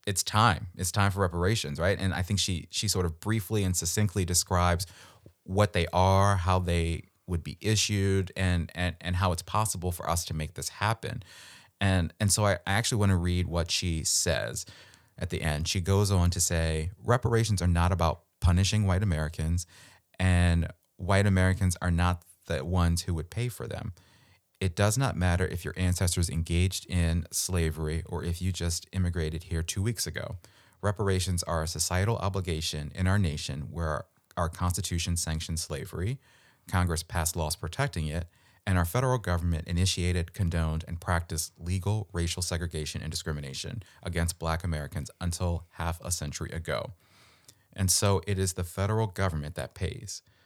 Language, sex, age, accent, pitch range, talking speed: English, male, 30-49, American, 85-100 Hz, 170 wpm